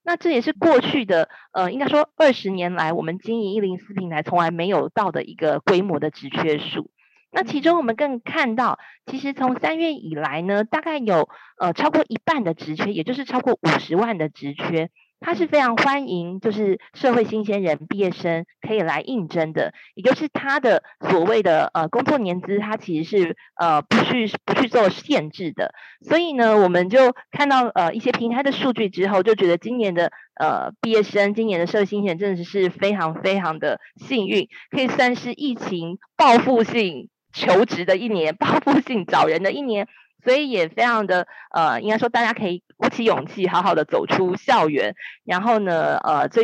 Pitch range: 180-255 Hz